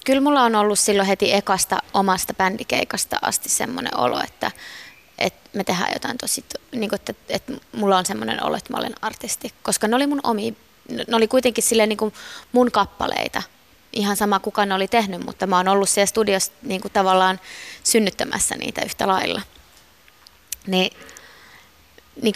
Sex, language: female, Finnish